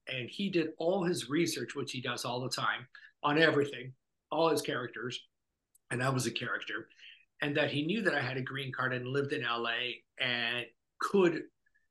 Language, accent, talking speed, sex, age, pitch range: English, American, 190 wpm, male, 50-69, 120-155 Hz